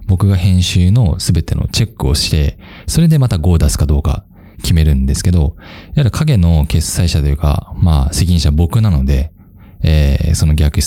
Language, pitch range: Japanese, 80-110 Hz